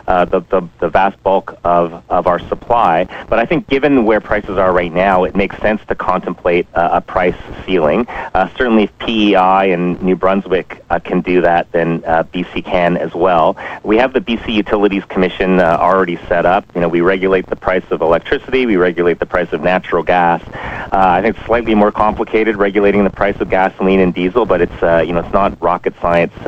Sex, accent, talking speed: male, American, 210 wpm